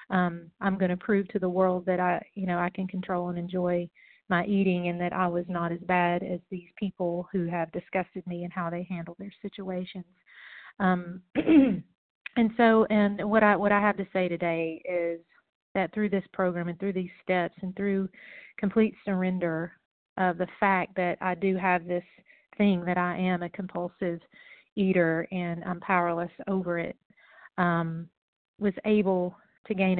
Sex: female